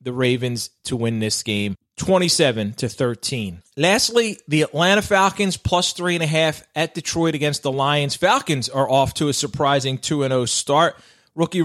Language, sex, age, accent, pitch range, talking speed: English, male, 30-49, American, 130-170 Hz, 145 wpm